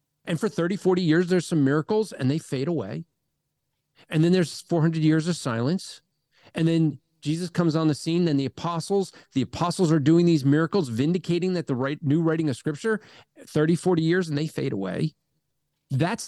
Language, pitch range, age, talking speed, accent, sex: English, 140-180 Hz, 40-59, 190 wpm, American, male